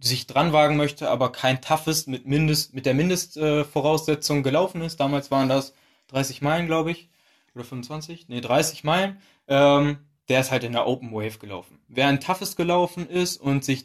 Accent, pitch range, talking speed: German, 125-150 Hz, 185 wpm